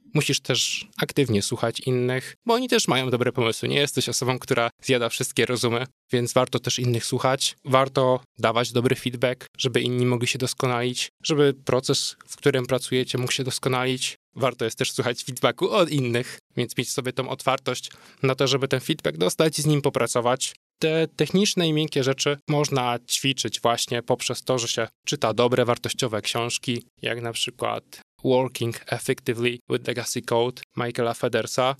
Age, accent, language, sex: 20-39, native, Polish, male